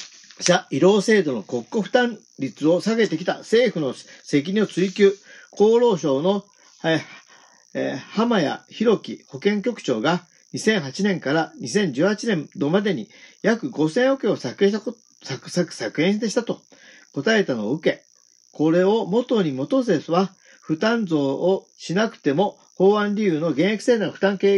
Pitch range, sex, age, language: 165-215 Hz, male, 40-59, Japanese